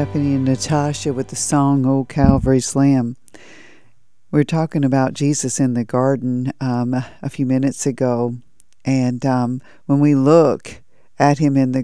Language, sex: English, female